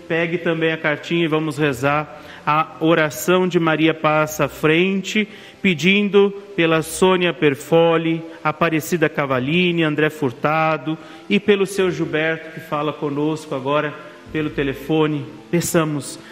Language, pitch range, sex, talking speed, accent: Portuguese, 150-180 Hz, male, 120 wpm, Brazilian